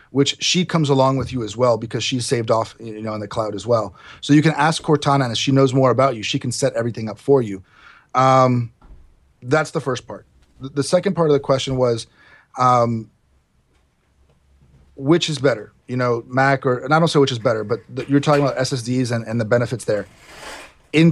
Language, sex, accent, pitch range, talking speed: English, male, American, 115-140 Hz, 215 wpm